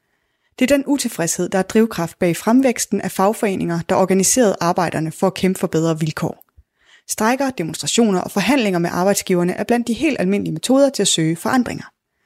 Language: Danish